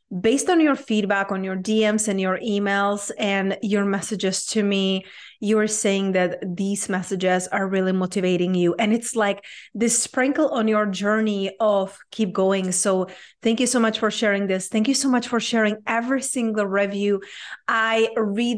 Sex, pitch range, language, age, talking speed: female, 195-240 Hz, English, 30-49, 180 wpm